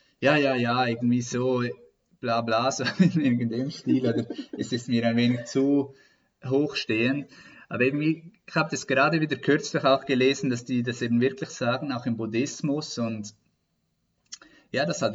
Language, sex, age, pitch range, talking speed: German, male, 20-39, 115-135 Hz, 165 wpm